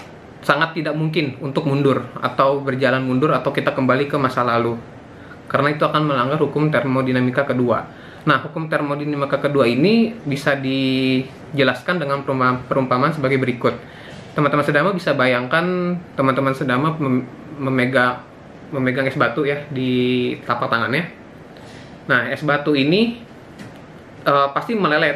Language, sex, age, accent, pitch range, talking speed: Indonesian, male, 20-39, native, 130-150 Hz, 125 wpm